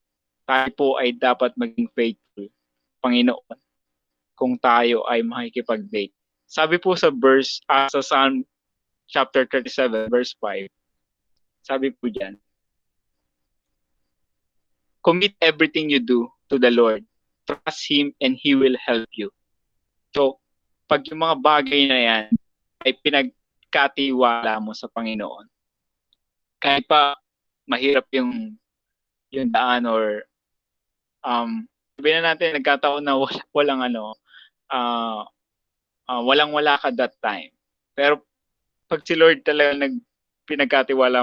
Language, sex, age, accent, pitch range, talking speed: Filipino, male, 20-39, native, 110-145 Hz, 120 wpm